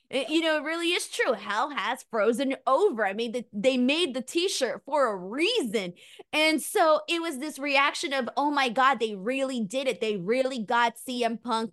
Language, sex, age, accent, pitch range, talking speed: English, female, 20-39, American, 225-290 Hz, 195 wpm